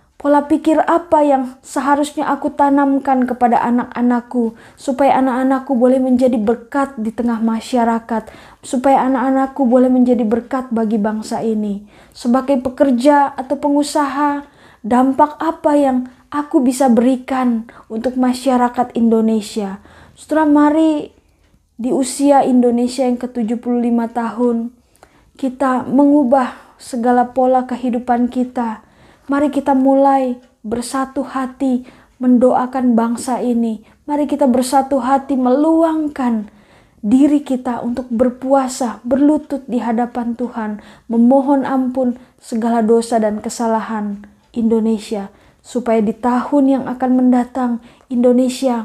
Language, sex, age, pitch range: Indonesian, female, 20-39, 235-275 Hz